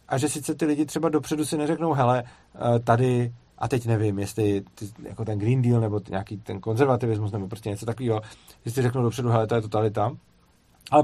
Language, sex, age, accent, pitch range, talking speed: Czech, male, 40-59, native, 110-130 Hz, 200 wpm